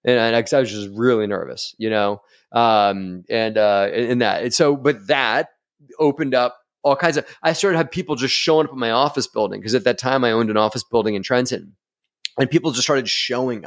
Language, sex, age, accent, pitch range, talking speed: English, male, 30-49, American, 115-140 Hz, 220 wpm